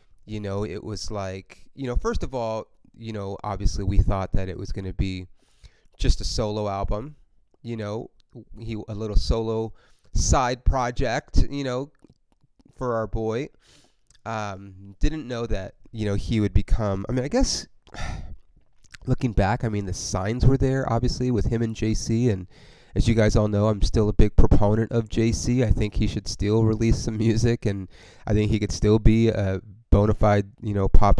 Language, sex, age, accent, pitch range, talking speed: English, male, 30-49, American, 95-115 Hz, 185 wpm